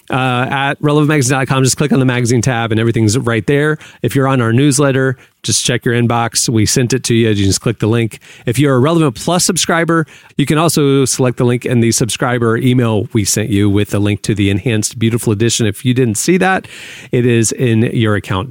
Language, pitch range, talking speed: English, 110-140 Hz, 225 wpm